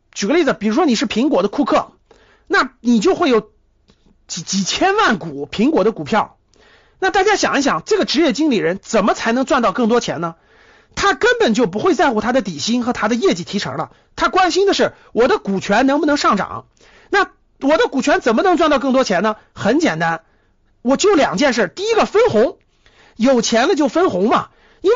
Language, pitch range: Chinese, 225-370 Hz